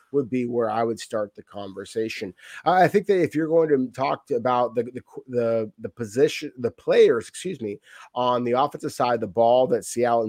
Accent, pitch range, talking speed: American, 120-160 Hz, 210 wpm